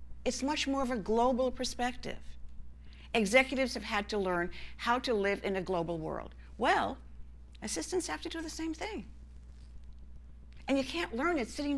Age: 50-69